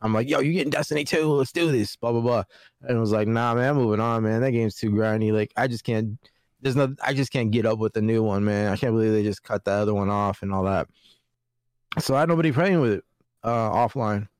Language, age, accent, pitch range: English, 20-39, American, 110-135 Hz